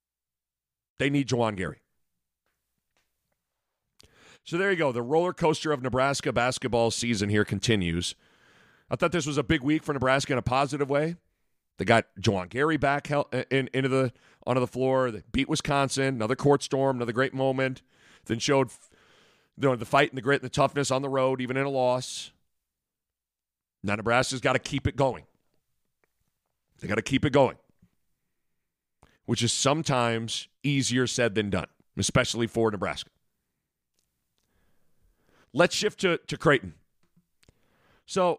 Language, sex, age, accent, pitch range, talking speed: English, male, 40-59, American, 110-140 Hz, 155 wpm